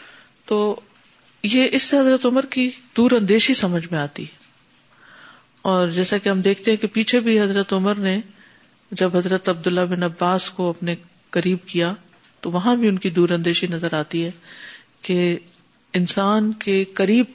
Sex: female